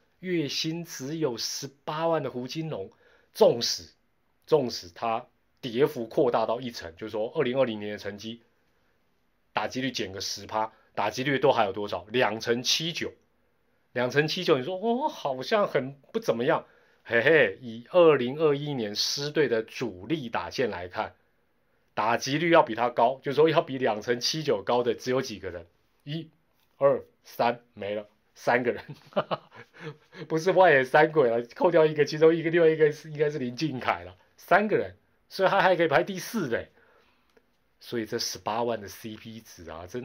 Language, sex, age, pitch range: Chinese, male, 30-49, 115-160 Hz